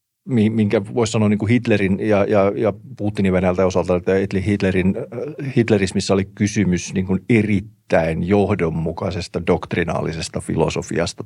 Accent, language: native, Finnish